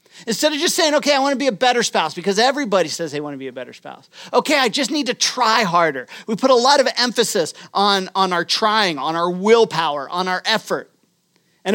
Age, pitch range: 40-59, 175-260 Hz